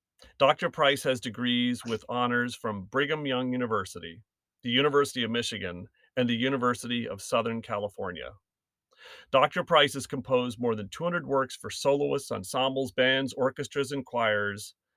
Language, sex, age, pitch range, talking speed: English, male, 40-59, 105-135 Hz, 140 wpm